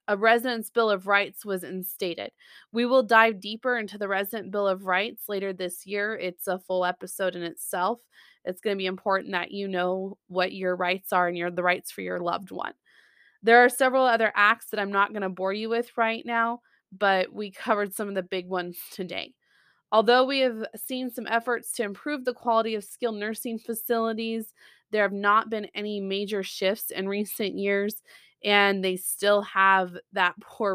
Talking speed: 195 wpm